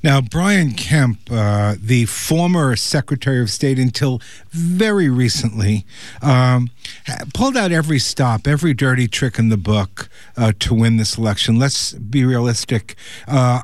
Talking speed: 140 wpm